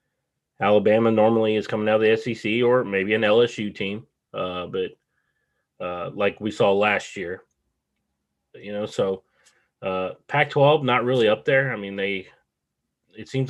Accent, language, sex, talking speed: American, English, male, 155 wpm